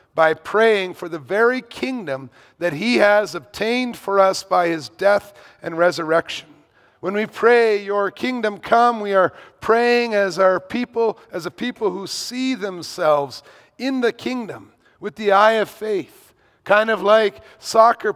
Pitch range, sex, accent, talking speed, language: 155-210 Hz, male, American, 155 wpm, English